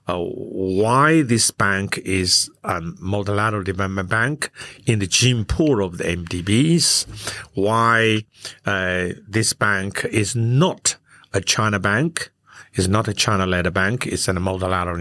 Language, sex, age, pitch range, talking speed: English, male, 60-79, 95-125 Hz, 130 wpm